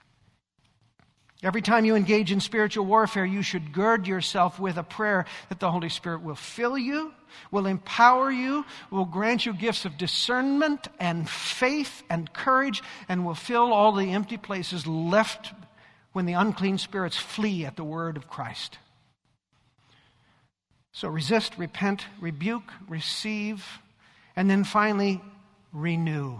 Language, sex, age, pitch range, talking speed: English, male, 50-69, 165-215 Hz, 140 wpm